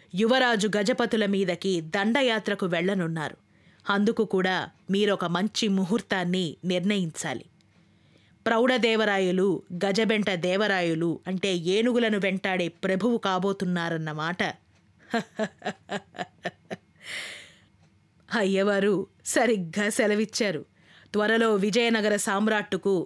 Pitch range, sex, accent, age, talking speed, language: 185-230 Hz, female, native, 20-39, 65 wpm, Telugu